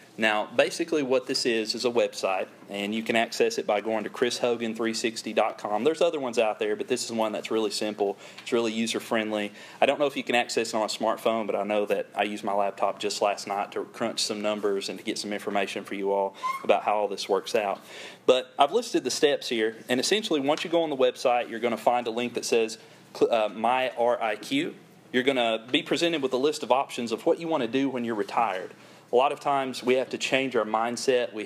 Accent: American